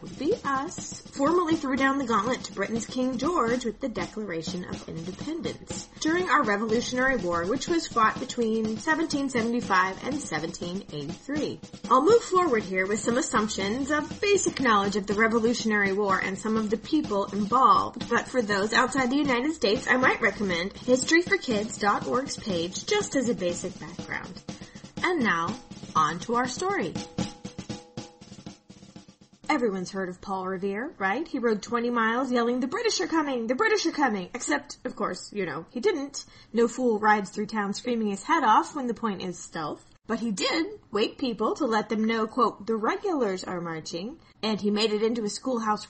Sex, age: female, 30-49